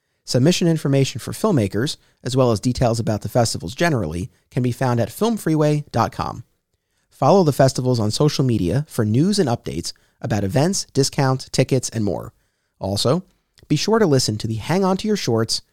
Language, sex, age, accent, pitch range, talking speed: English, male, 30-49, American, 110-160 Hz, 170 wpm